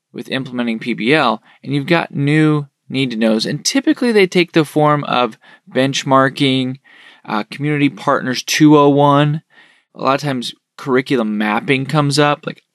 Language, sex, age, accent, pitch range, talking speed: English, male, 20-39, American, 120-150 Hz, 145 wpm